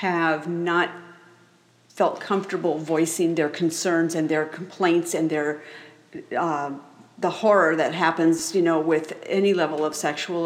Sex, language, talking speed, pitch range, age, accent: female, English, 140 wpm, 165-195 Hz, 50-69, American